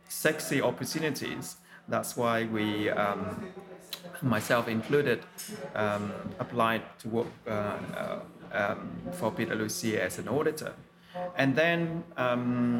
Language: English